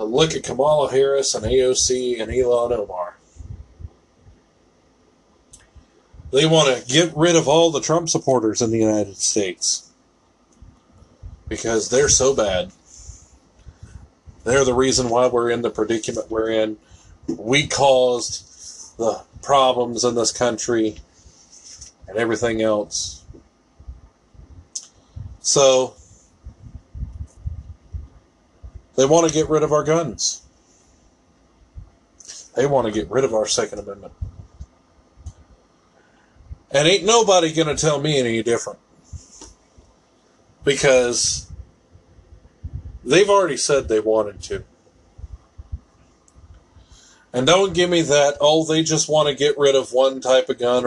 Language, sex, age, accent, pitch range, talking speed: English, male, 40-59, American, 85-130 Hz, 115 wpm